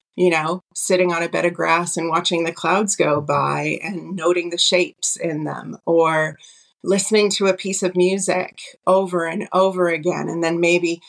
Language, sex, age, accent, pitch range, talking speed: English, female, 30-49, American, 155-190 Hz, 185 wpm